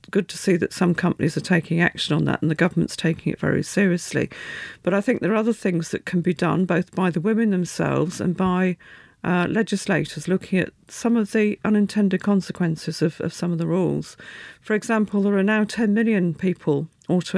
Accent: British